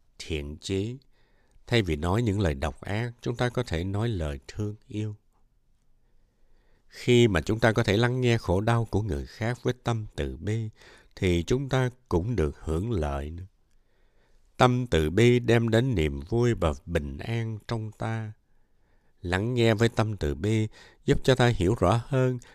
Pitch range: 90-120 Hz